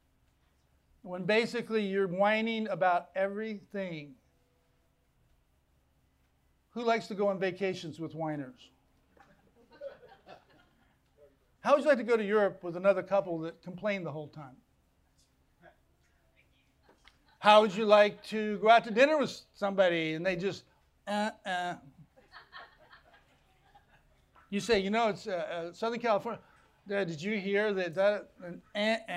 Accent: American